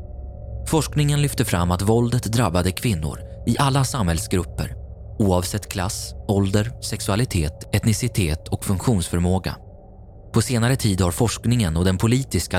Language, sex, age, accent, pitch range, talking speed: Swedish, male, 20-39, native, 90-115 Hz, 120 wpm